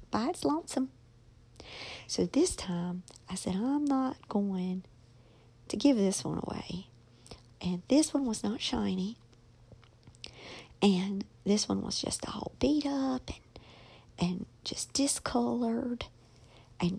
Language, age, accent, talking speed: English, 50-69, American, 125 wpm